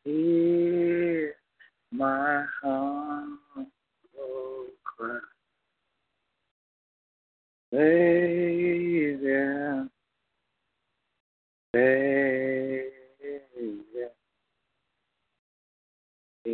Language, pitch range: English, 135-165 Hz